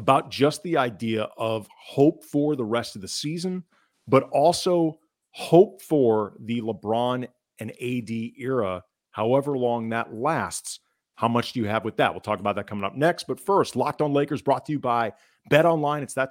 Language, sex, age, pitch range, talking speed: English, male, 40-59, 105-140 Hz, 190 wpm